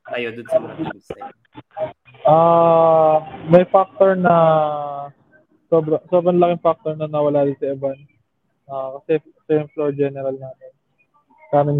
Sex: male